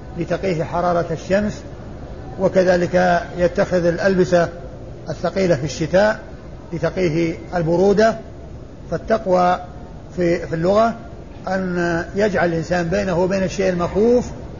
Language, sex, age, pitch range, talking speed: Arabic, male, 50-69, 170-190 Hz, 85 wpm